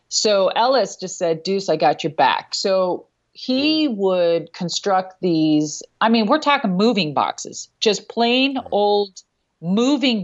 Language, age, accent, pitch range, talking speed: English, 40-59, American, 180-230 Hz, 140 wpm